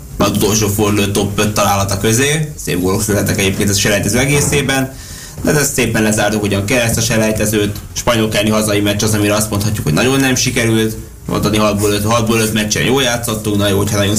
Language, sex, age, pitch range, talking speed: Hungarian, male, 20-39, 105-120 Hz, 185 wpm